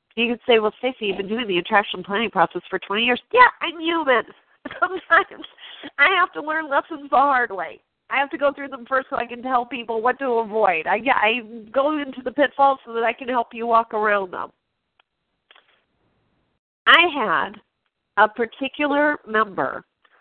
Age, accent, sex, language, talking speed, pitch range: 40-59, American, female, English, 185 wpm, 220-285 Hz